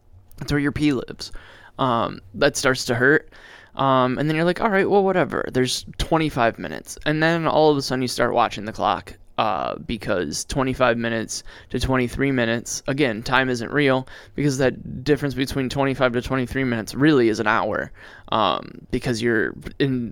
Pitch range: 115-135 Hz